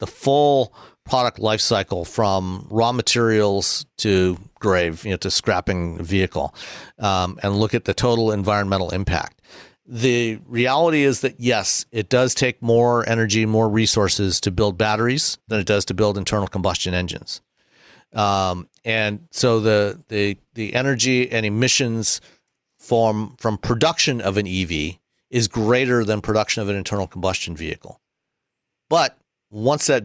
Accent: American